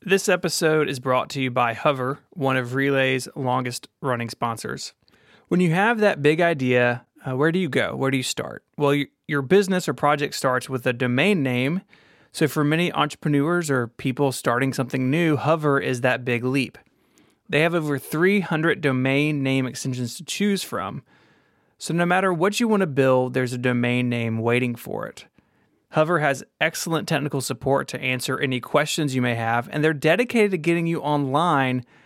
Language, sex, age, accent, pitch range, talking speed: English, male, 30-49, American, 130-165 Hz, 180 wpm